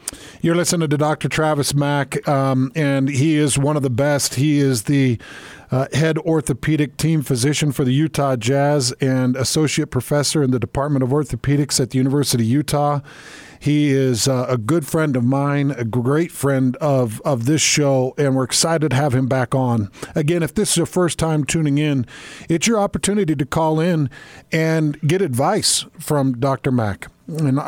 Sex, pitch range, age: male, 135-165 Hz, 50-69